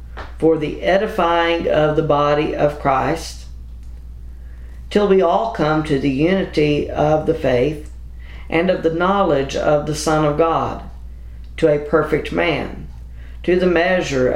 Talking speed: 140 wpm